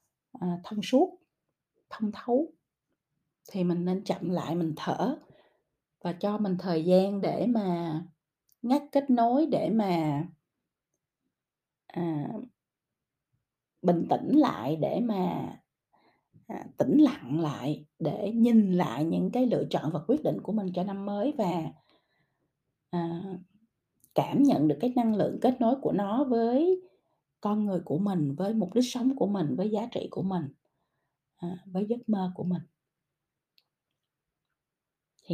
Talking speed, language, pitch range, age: 140 wpm, Vietnamese, 170-225 Hz, 20-39